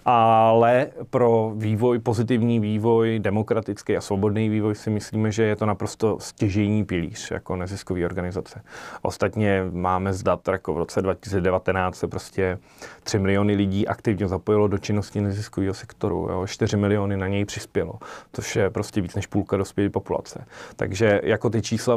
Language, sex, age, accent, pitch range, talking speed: Czech, male, 30-49, native, 100-115 Hz, 155 wpm